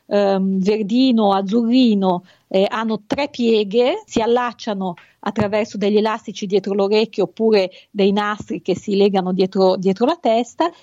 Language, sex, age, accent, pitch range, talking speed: Italian, female, 50-69, native, 200-260 Hz, 125 wpm